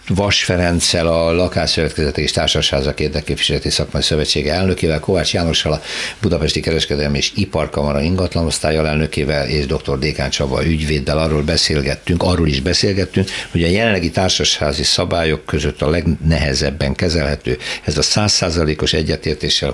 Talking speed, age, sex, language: 120 wpm, 60-79, male, Hungarian